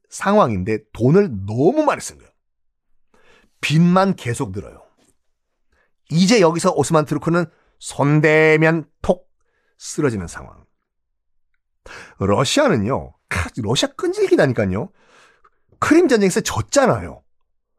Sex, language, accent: male, Korean, native